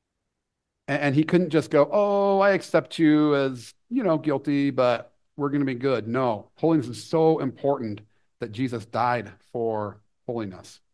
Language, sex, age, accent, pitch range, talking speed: English, male, 50-69, American, 110-145 Hz, 160 wpm